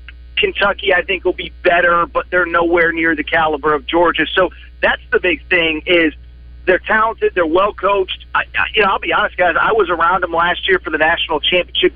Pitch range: 165-200 Hz